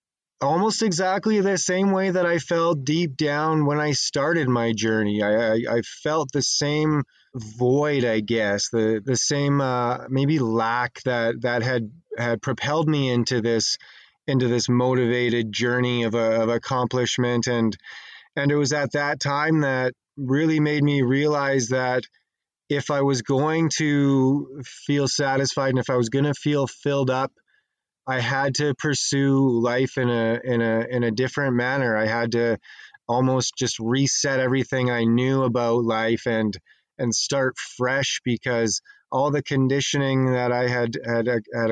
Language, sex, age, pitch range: English, male, 20-39, 120-140 Hz